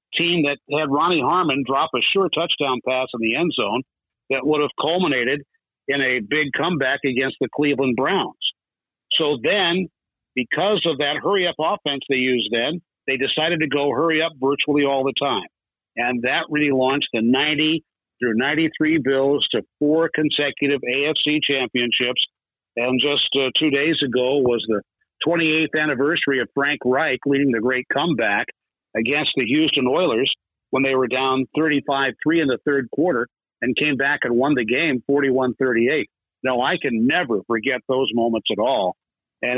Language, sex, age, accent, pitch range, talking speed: English, male, 60-79, American, 130-155 Hz, 165 wpm